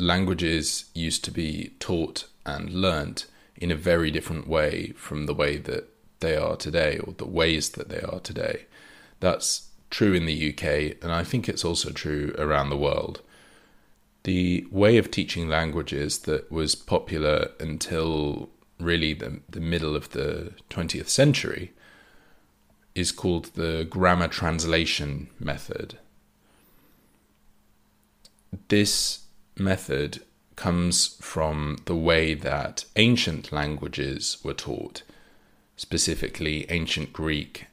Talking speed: 120 wpm